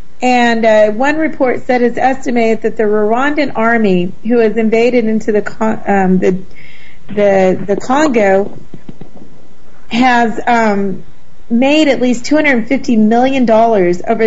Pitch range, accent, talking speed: 215-250 Hz, American, 125 wpm